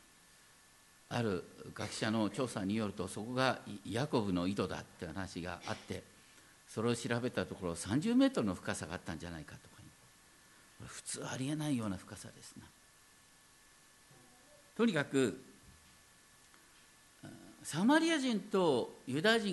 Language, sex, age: Japanese, male, 50-69